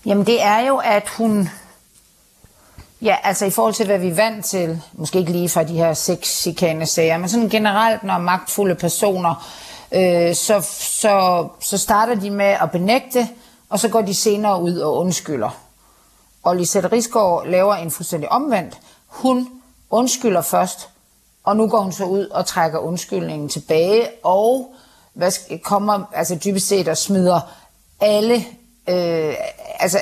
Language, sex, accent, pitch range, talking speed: Danish, female, native, 175-220 Hz, 160 wpm